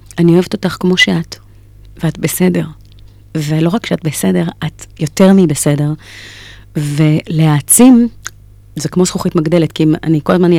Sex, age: female, 30-49